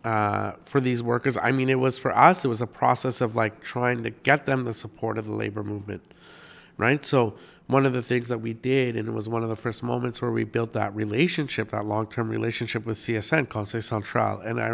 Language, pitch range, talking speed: English, 105-120 Hz, 230 wpm